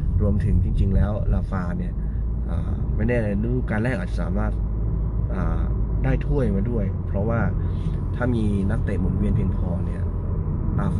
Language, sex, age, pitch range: Thai, male, 20-39, 90-105 Hz